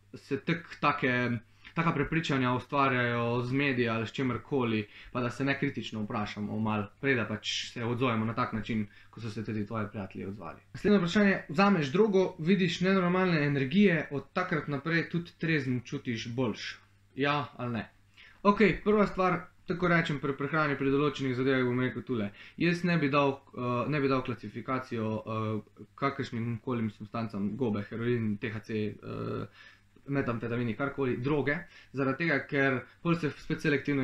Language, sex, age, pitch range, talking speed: English, male, 20-39, 115-145 Hz, 155 wpm